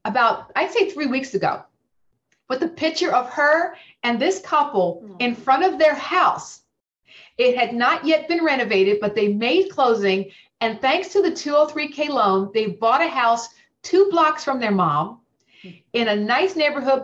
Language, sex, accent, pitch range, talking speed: English, female, American, 205-275 Hz, 170 wpm